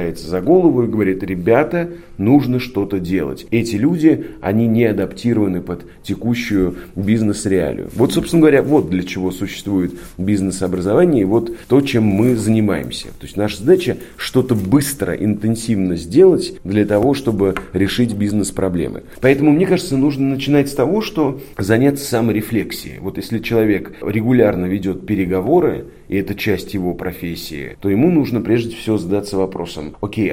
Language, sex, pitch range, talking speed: Russian, male, 95-115 Hz, 140 wpm